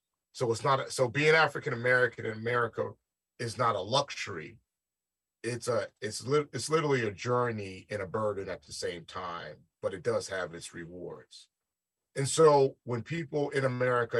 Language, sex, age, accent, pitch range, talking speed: English, male, 40-59, American, 115-140 Hz, 175 wpm